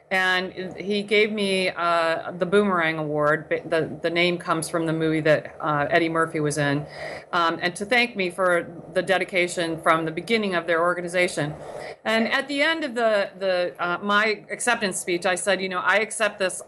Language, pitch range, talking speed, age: English, 170-205 Hz, 190 wpm, 40-59